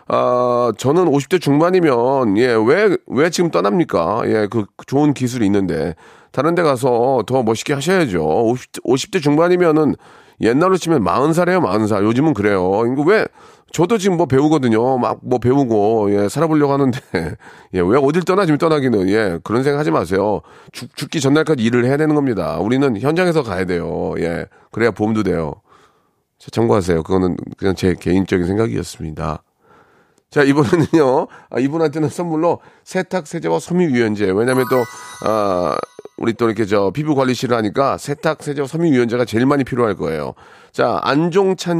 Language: Korean